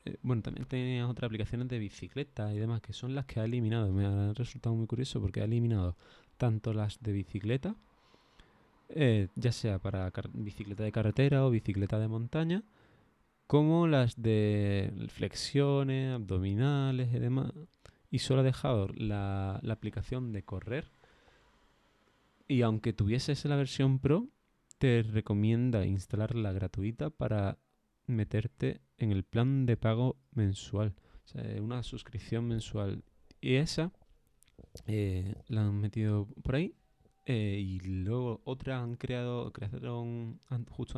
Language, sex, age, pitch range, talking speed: Spanish, male, 20-39, 105-125 Hz, 140 wpm